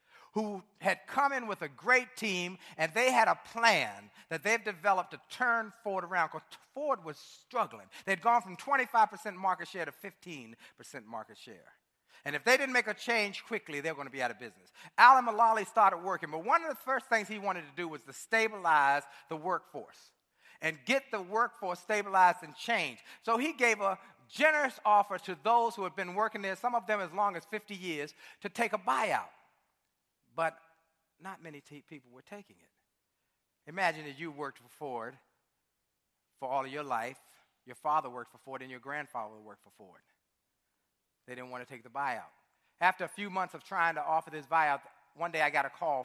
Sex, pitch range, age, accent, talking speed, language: male, 155-215 Hz, 50-69, American, 200 wpm, English